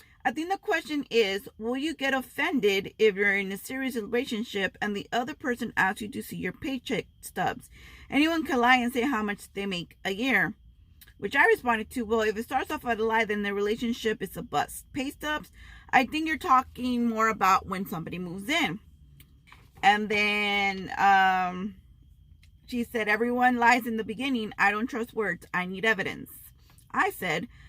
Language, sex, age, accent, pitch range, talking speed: English, female, 30-49, American, 195-250 Hz, 185 wpm